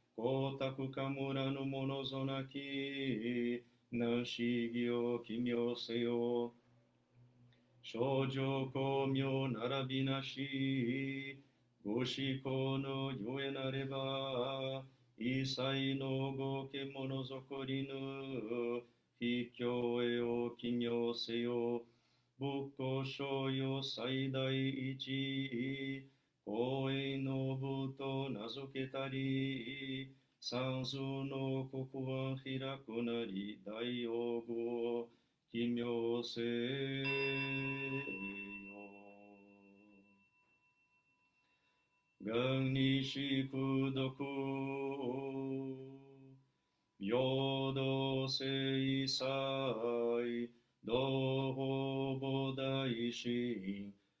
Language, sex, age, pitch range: Portuguese, male, 40-59, 120-135 Hz